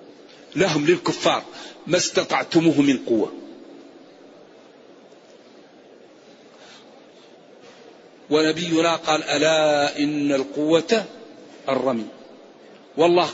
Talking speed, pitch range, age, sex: 60 wpm, 165-230 Hz, 50-69, male